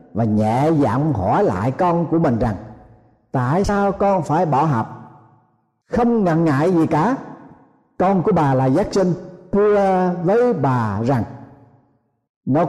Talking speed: 145 wpm